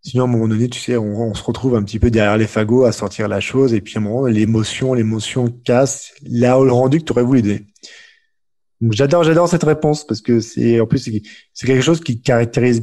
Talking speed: 255 wpm